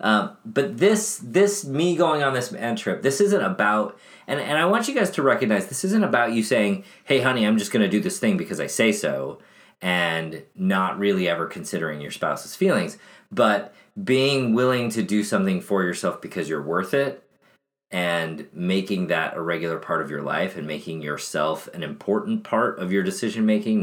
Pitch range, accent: 85-135 Hz, American